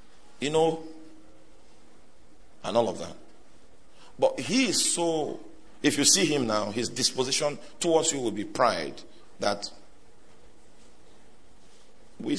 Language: English